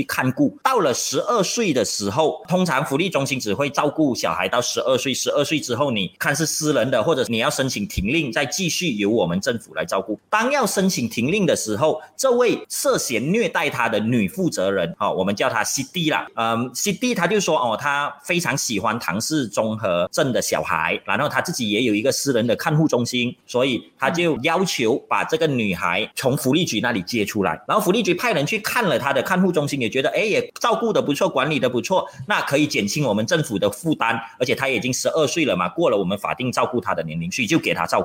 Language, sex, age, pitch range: Chinese, male, 30-49, 135-190 Hz